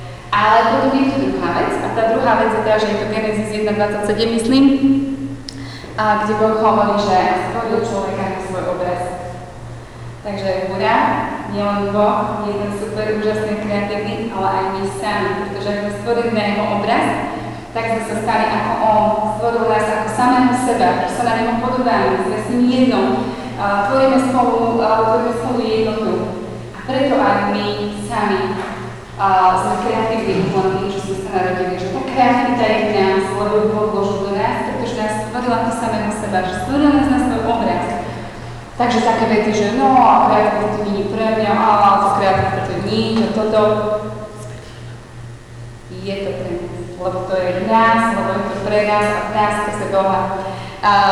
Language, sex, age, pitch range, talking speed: Czech, female, 20-39, 195-225 Hz, 165 wpm